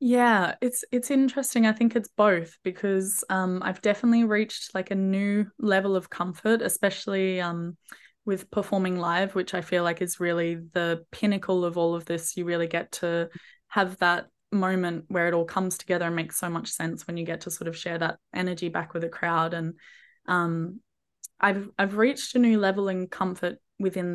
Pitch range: 175-215 Hz